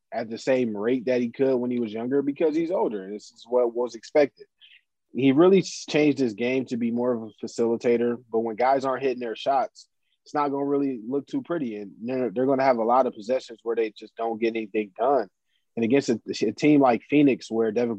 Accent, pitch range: American, 115-145 Hz